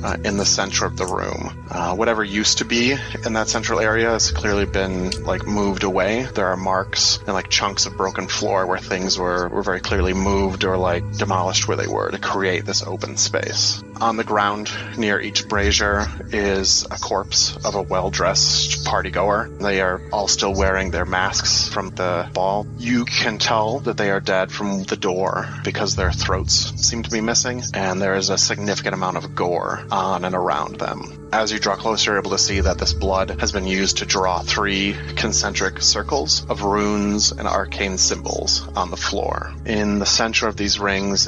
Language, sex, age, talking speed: English, male, 30-49, 195 wpm